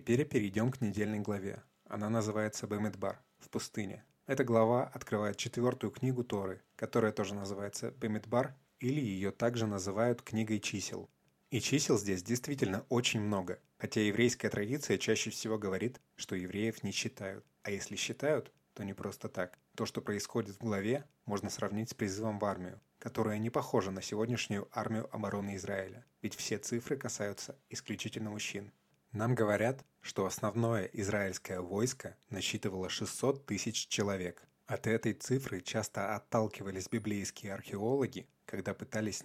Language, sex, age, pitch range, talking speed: Russian, male, 20-39, 100-120 Hz, 140 wpm